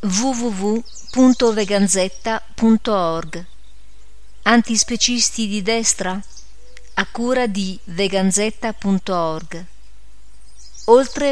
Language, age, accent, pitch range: Italian, 40-59, native, 170-210 Hz